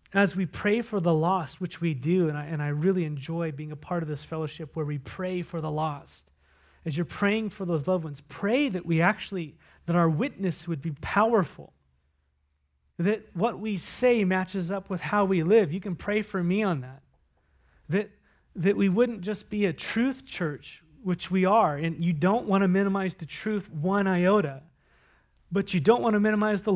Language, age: English, 30-49